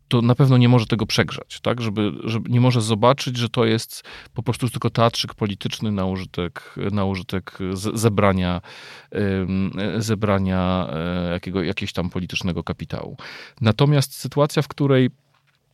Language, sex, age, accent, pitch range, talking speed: Polish, male, 40-59, native, 95-130 Hz, 135 wpm